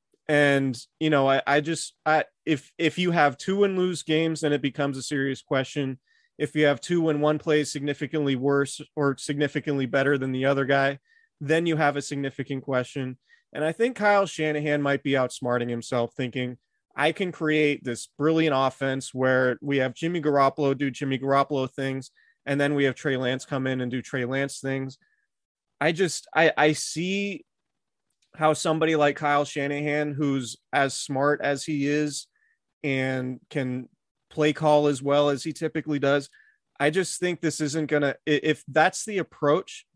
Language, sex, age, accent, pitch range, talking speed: English, male, 30-49, American, 135-155 Hz, 175 wpm